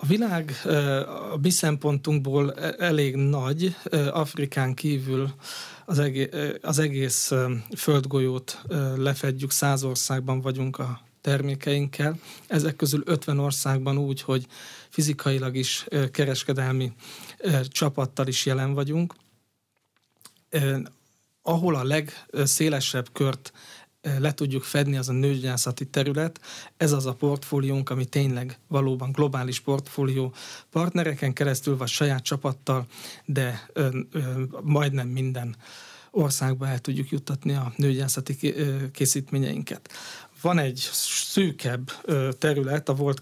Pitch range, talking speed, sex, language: 130-150 Hz, 105 wpm, male, Hungarian